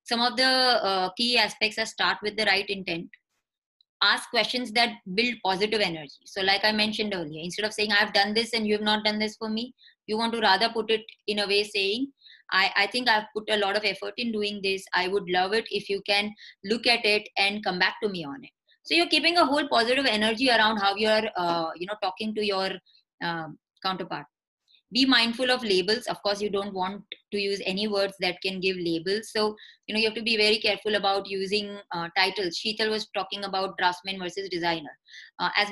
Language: English